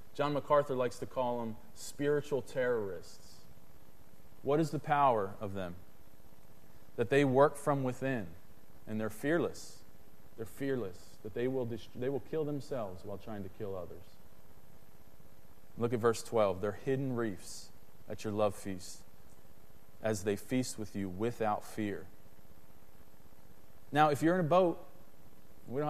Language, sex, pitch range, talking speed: English, male, 105-170 Hz, 140 wpm